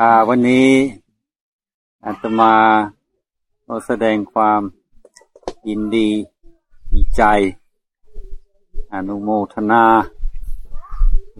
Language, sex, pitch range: Thai, male, 95-120 Hz